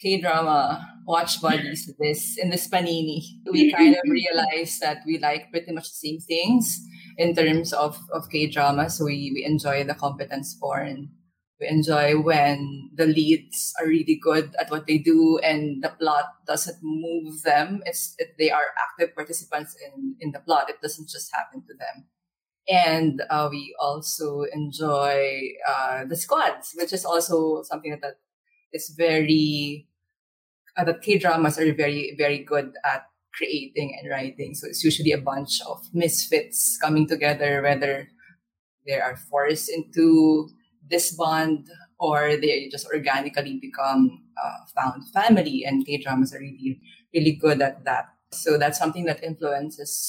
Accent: Filipino